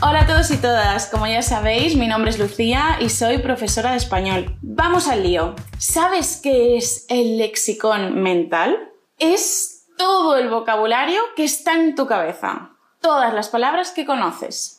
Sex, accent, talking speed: female, Spanish, 160 wpm